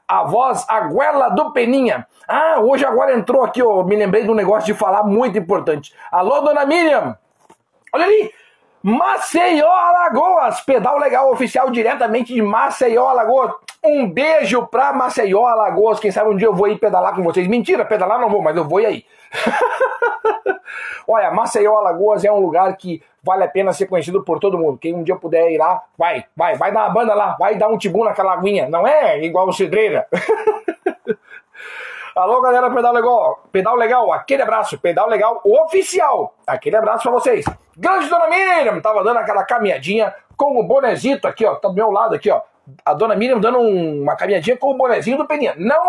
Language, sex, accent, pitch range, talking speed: Portuguese, male, Brazilian, 195-275 Hz, 185 wpm